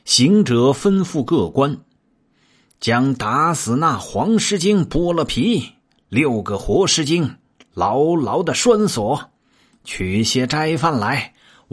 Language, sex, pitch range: Chinese, male, 105-170 Hz